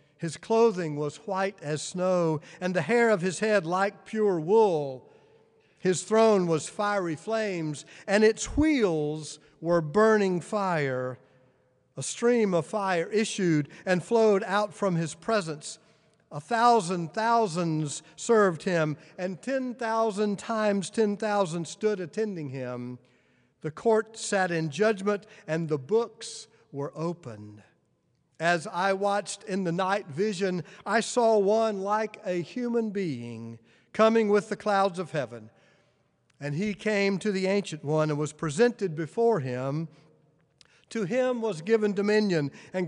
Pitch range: 155-215 Hz